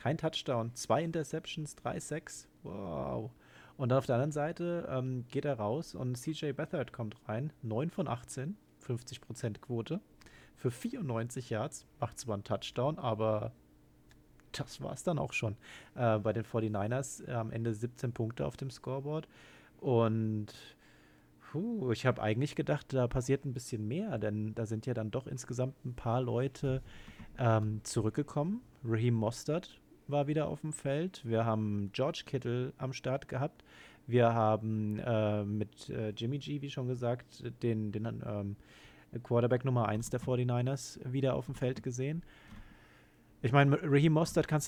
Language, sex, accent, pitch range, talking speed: German, male, German, 110-140 Hz, 160 wpm